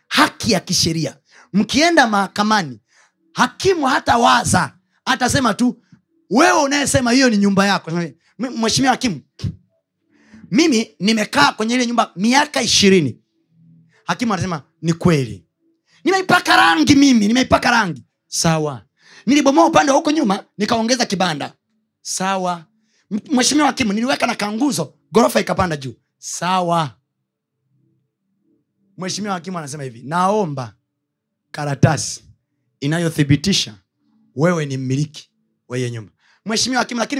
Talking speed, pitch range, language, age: 110 wpm, 155-235 Hz, Swahili, 30-49